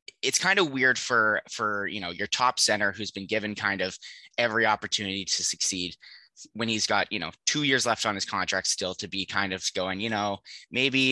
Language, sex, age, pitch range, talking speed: English, male, 20-39, 95-115 Hz, 215 wpm